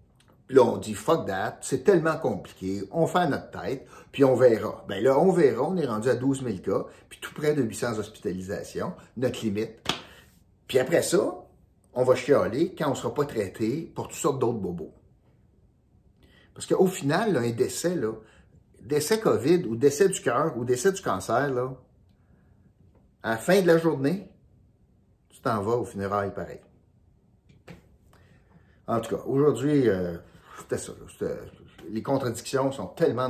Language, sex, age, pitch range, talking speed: French, male, 60-79, 105-145 Hz, 175 wpm